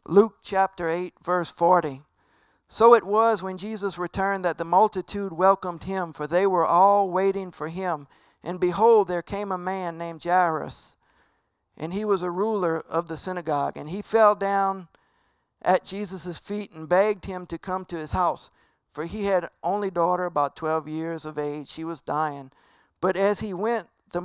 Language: English